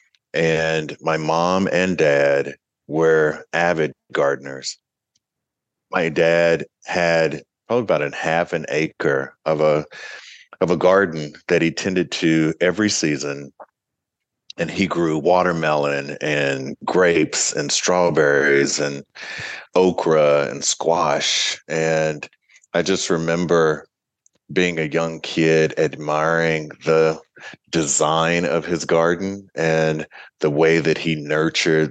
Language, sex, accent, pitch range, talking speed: English, male, American, 75-85 Hz, 115 wpm